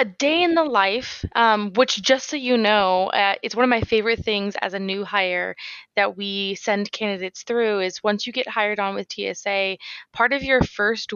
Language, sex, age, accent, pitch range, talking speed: English, female, 20-39, American, 195-245 Hz, 210 wpm